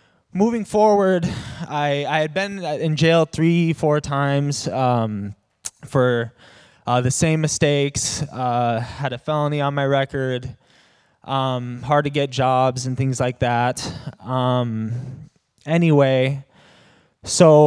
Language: English